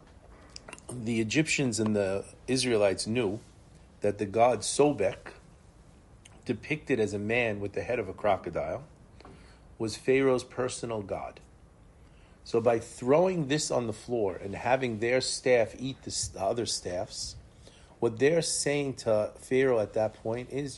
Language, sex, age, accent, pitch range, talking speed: English, male, 40-59, American, 100-125 Hz, 140 wpm